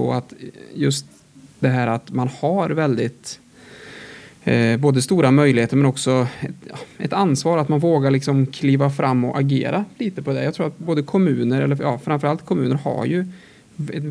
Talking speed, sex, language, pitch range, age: 175 wpm, male, Swedish, 130-155 Hz, 20-39